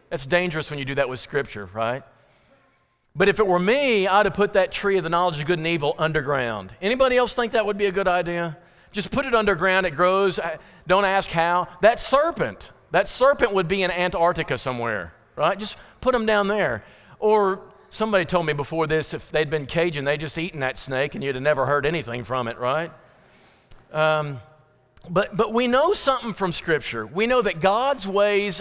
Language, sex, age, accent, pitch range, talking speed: English, male, 40-59, American, 155-200 Hz, 205 wpm